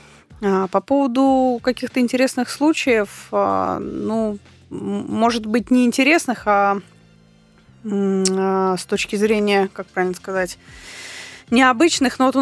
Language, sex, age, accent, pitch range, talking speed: Russian, female, 20-39, native, 190-245 Hz, 100 wpm